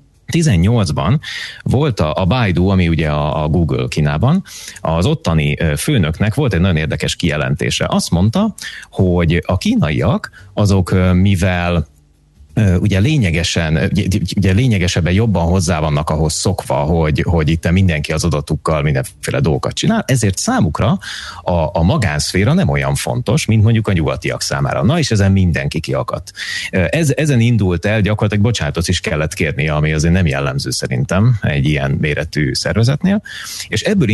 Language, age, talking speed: Hungarian, 30-49, 140 wpm